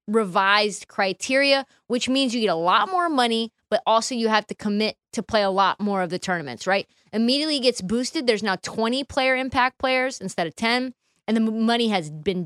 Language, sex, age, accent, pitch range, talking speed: English, female, 20-39, American, 200-245 Hz, 200 wpm